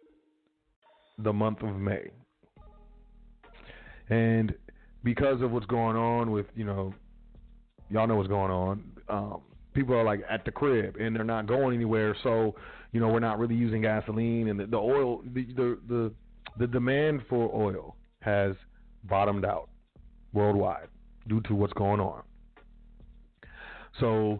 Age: 40-59